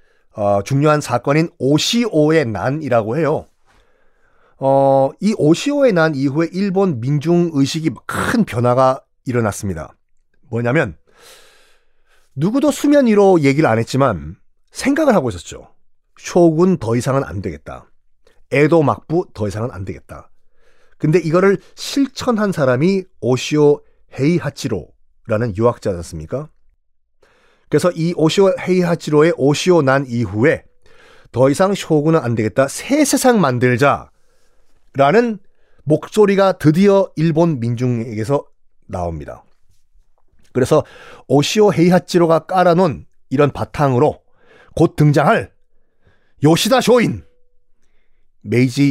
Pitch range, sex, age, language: 120-185 Hz, male, 40-59, Korean